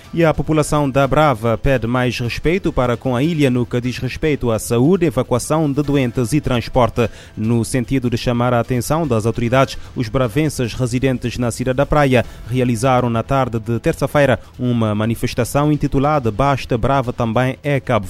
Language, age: Portuguese, 20-39